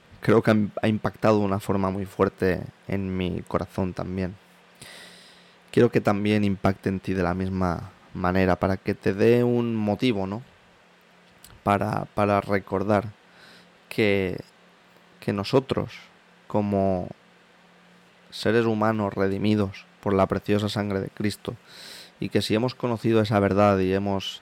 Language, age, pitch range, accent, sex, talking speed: Spanish, 20-39, 95-105 Hz, Spanish, male, 135 wpm